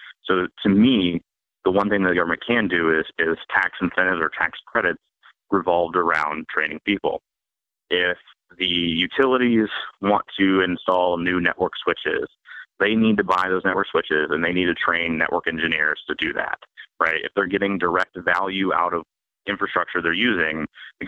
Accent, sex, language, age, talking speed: American, male, English, 30-49, 170 wpm